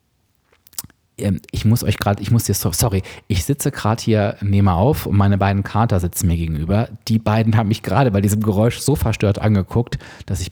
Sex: male